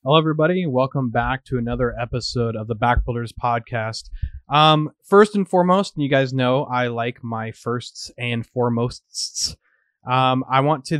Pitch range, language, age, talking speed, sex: 115-145 Hz, English, 30-49, 155 wpm, male